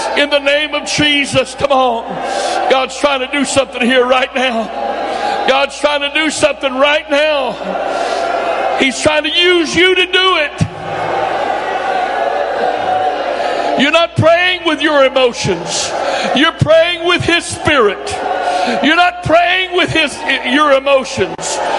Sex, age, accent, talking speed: male, 60-79, American, 130 wpm